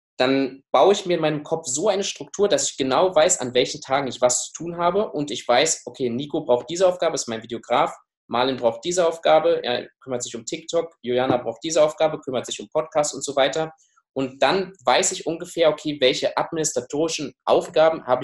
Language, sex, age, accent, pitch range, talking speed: German, male, 20-39, German, 115-165 Hz, 205 wpm